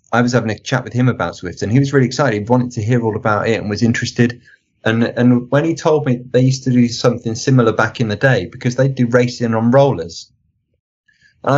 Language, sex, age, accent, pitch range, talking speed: English, male, 30-49, British, 100-125 Hz, 245 wpm